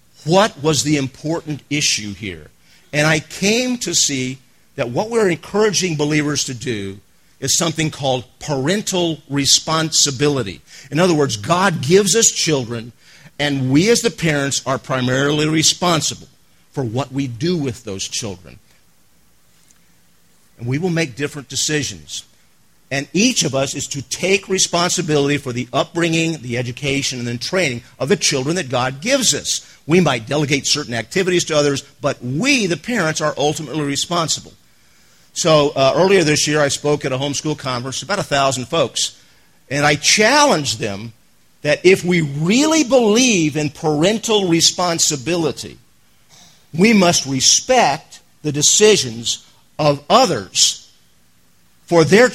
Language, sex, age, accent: English, male, 50-69, American